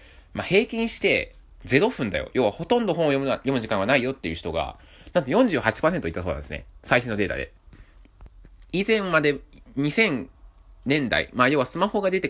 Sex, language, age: male, Japanese, 20-39